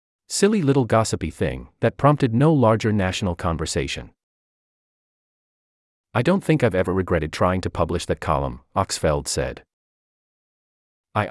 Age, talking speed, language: 30-49, 125 wpm, English